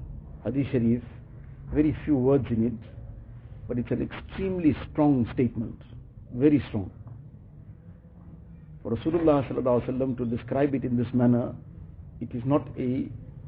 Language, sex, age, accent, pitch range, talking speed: English, male, 50-69, Indian, 115-140 Hz, 120 wpm